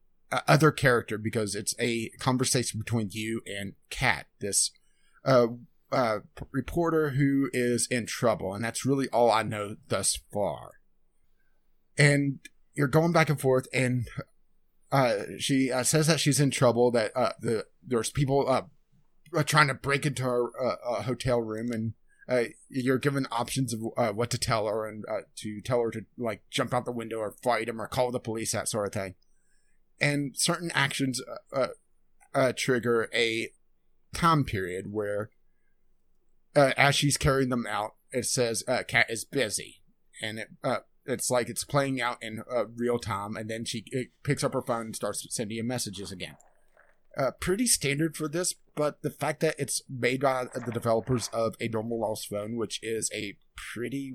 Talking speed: 180 wpm